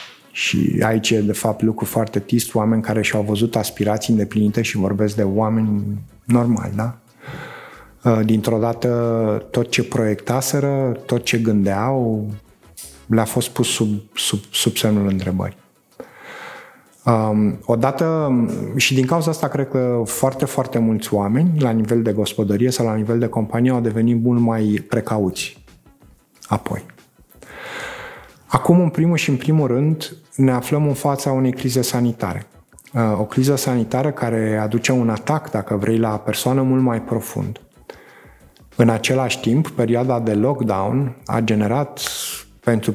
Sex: male